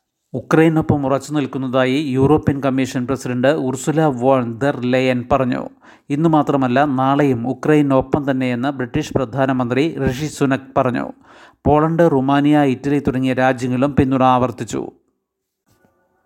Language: Malayalam